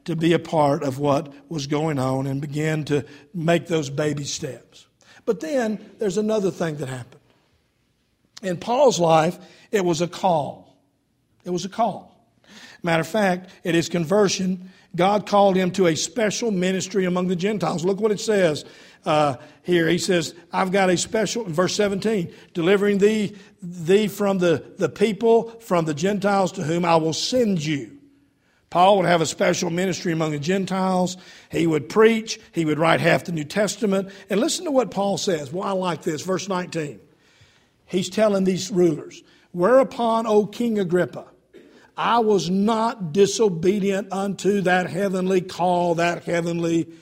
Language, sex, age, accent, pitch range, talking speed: English, male, 60-79, American, 160-200 Hz, 165 wpm